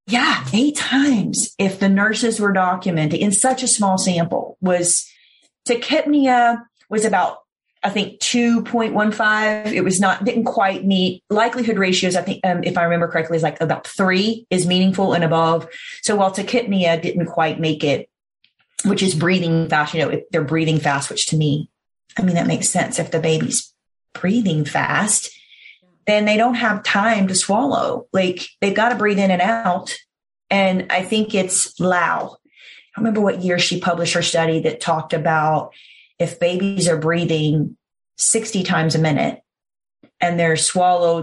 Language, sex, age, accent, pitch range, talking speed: English, female, 30-49, American, 160-210 Hz, 165 wpm